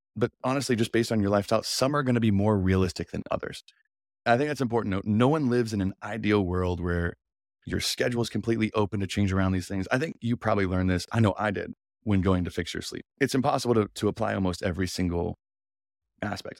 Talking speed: 230 wpm